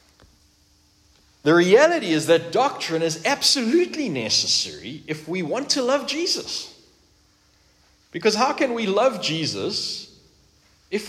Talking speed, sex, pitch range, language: 115 wpm, male, 145-230 Hz, English